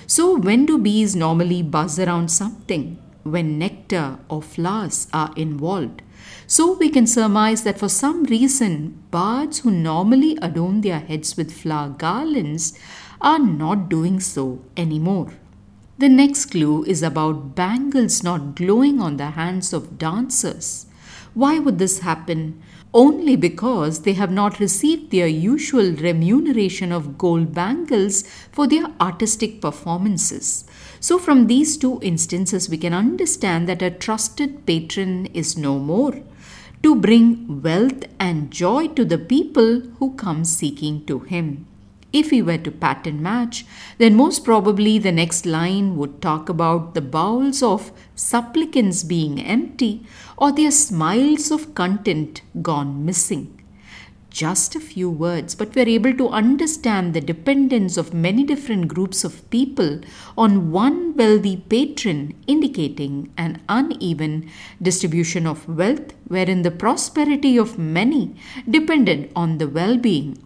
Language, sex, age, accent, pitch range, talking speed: English, female, 50-69, Indian, 165-250 Hz, 140 wpm